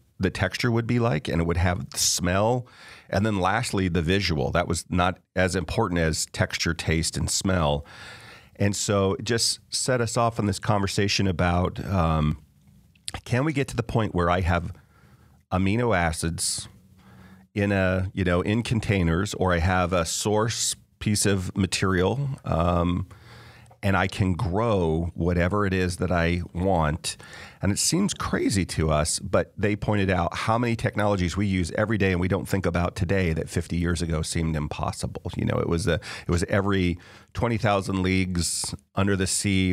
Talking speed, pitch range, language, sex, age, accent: 175 wpm, 85-105 Hz, English, male, 40-59, American